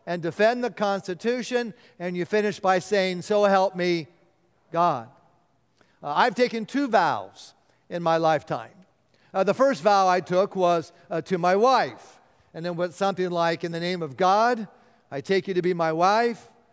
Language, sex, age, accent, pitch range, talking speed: English, male, 50-69, American, 170-215 Hz, 175 wpm